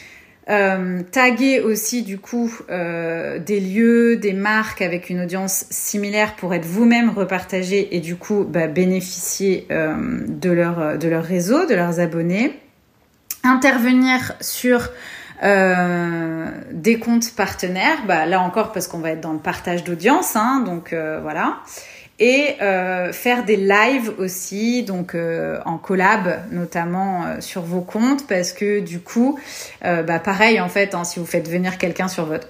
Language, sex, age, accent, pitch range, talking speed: French, female, 30-49, French, 180-230 Hz, 155 wpm